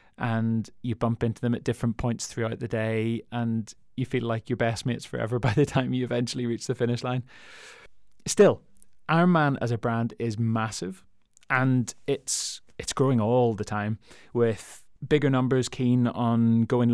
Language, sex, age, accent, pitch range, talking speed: English, male, 20-39, British, 120-140 Hz, 170 wpm